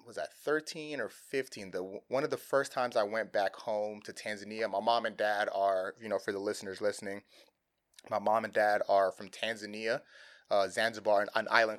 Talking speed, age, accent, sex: 205 wpm, 20-39, American, male